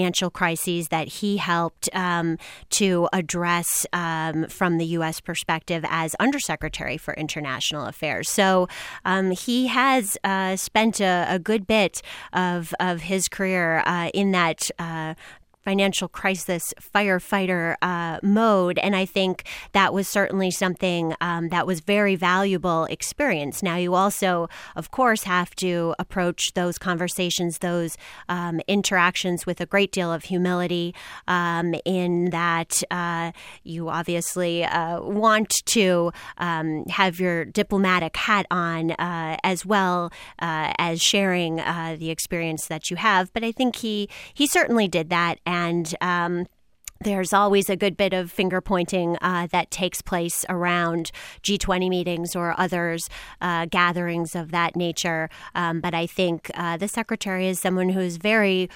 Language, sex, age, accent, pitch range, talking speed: English, female, 30-49, American, 170-190 Hz, 145 wpm